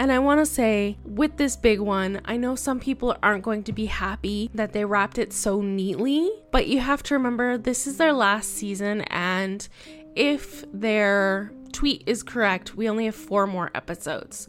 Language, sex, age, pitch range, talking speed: English, female, 10-29, 195-240 Hz, 190 wpm